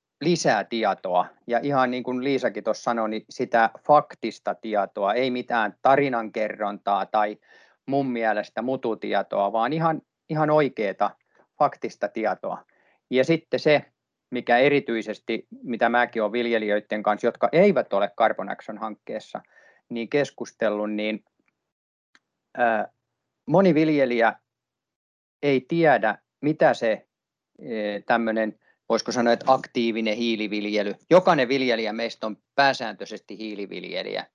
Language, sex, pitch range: Finnish, male, 110-135 Hz